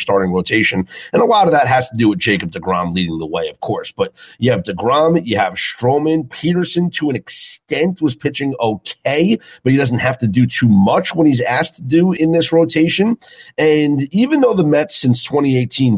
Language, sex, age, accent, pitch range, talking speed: English, male, 40-59, American, 105-155 Hz, 205 wpm